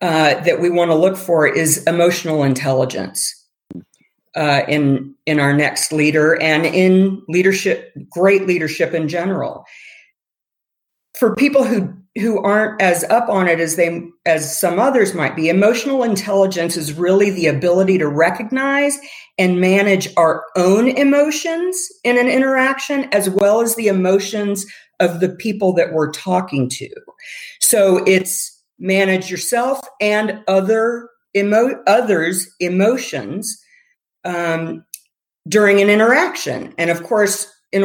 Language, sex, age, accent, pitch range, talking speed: English, female, 50-69, American, 170-240 Hz, 135 wpm